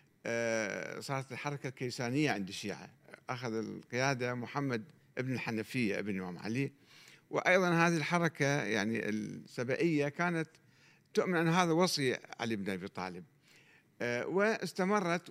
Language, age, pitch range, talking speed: Arabic, 50-69, 120-165 Hz, 110 wpm